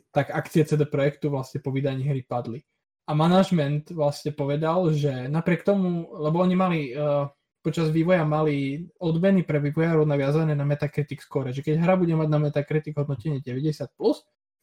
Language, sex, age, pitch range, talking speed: Slovak, male, 20-39, 130-155 Hz, 160 wpm